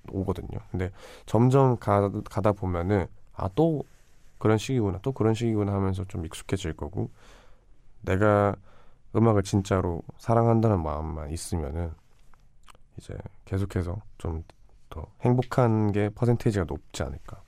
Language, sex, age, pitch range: Korean, male, 20-39, 90-110 Hz